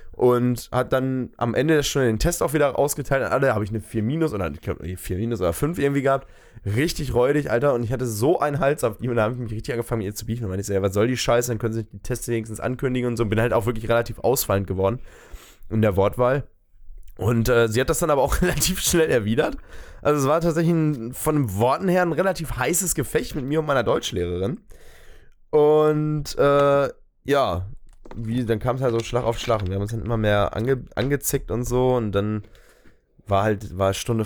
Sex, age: male, 10-29